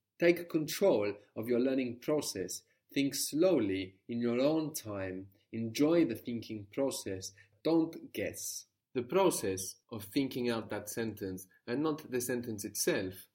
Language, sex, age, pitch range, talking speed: English, male, 30-49, 105-150 Hz, 135 wpm